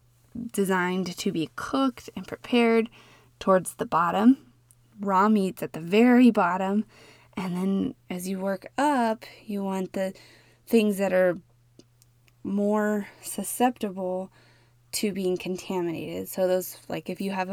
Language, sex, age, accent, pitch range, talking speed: English, female, 20-39, American, 175-225 Hz, 130 wpm